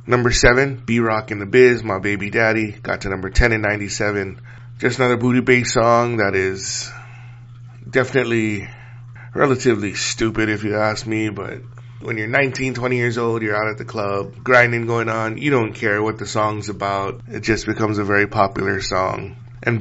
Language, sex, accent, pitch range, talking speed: English, male, American, 105-120 Hz, 180 wpm